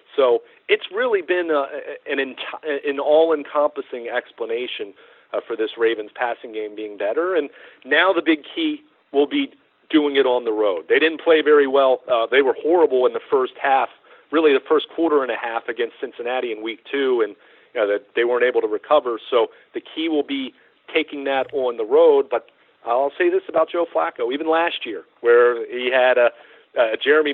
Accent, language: American, English